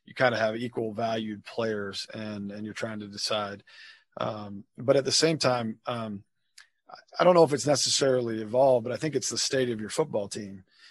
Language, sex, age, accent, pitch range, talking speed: English, male, 40-59, American, 110-125 Hz, 205 wpm